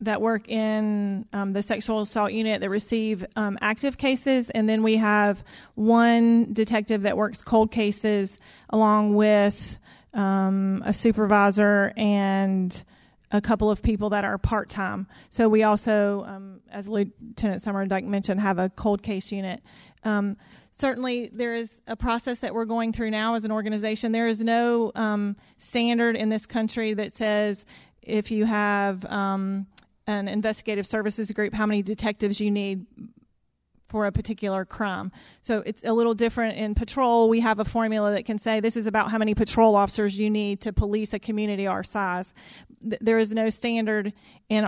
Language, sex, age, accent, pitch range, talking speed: English, female, 30-49, American, 205-225 Hz, 170 wpm